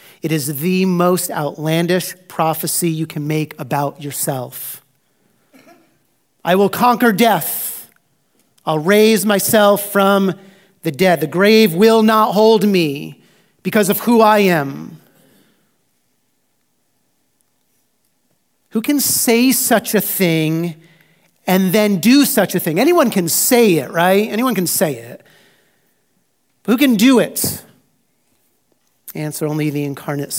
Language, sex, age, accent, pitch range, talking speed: English, male, 40-59, American, 150-205 Hz, 120 wpm